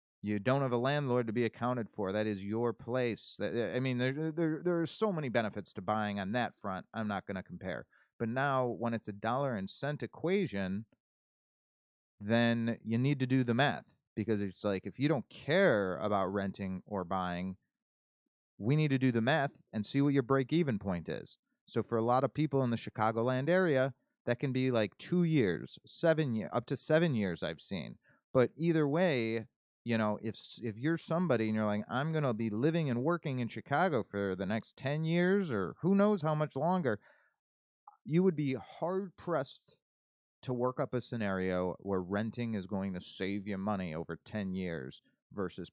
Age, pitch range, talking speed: 30-49, 100-140 Hz, 200 wpm